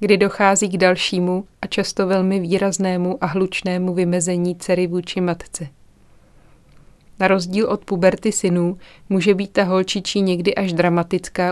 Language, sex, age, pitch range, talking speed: Czech, female, 30-49, 175-190 Hz, 135 wpm